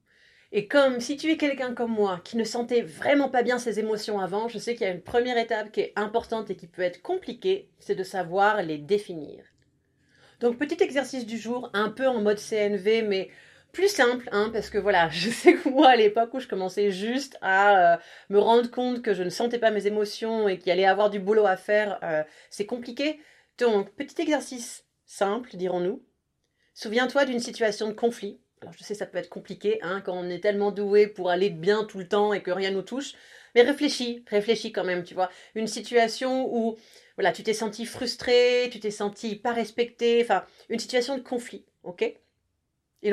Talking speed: 210 wpm